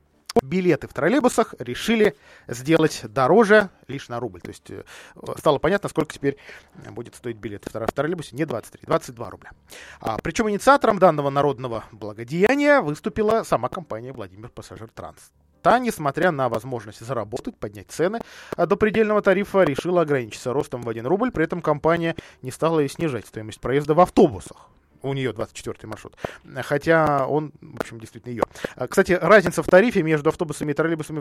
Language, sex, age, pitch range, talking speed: Russian, male, 20-39, 125-185 Hz, 155 wpm